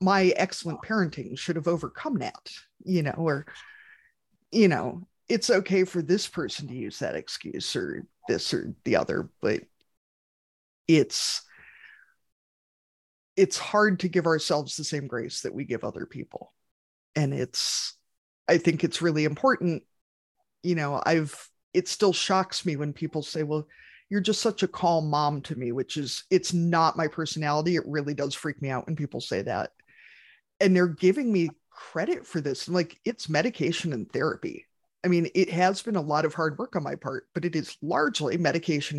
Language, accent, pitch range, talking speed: English, American, 145-185 Hz, 175 wpm